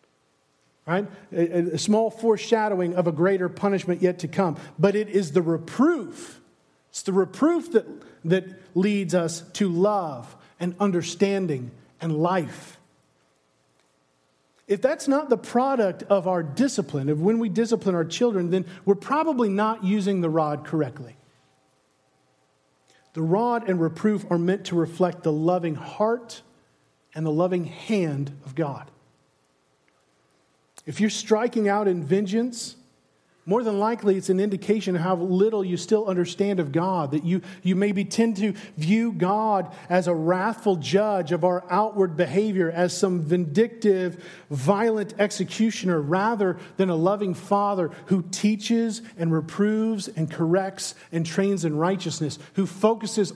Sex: male